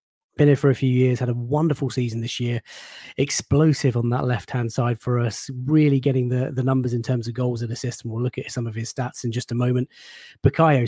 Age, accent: 20-39, British